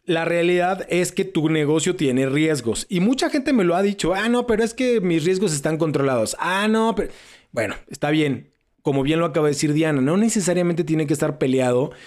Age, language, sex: 30-49, Spanish, male